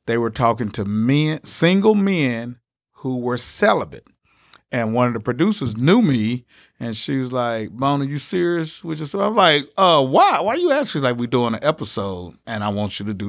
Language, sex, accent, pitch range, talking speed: English, male, American, 110-145 Hz, 210 wpm